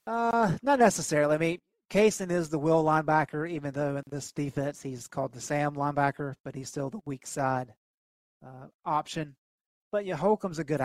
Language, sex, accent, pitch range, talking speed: English, male, American, 140-160 Hz, 185 wpm